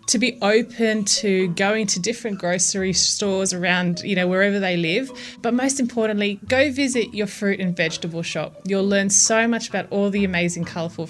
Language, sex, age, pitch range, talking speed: English, female, 20-39, 180-235 Hz, 185 wpm